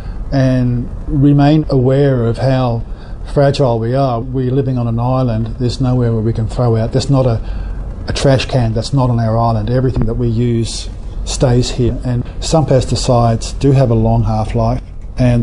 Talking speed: 180 wpm